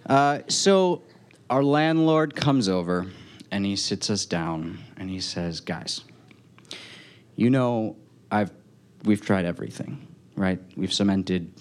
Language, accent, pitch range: English, American, 100-130 Hz